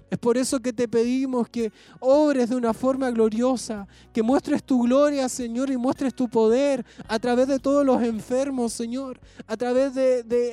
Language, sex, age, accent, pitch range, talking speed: Spanish, male, 20-39, Argentinian, 230-255 Hz, 180 wpm